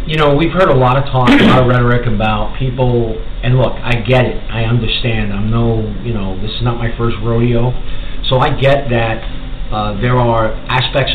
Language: English